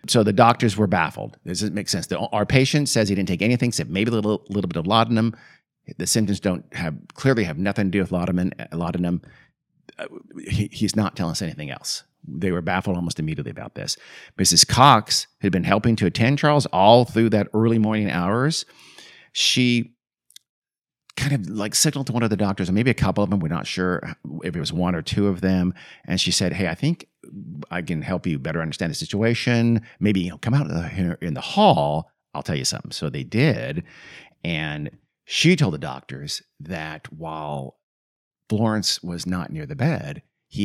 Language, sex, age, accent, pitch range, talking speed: English, male, 50-69, American, 90-120 Hz, 195 wpm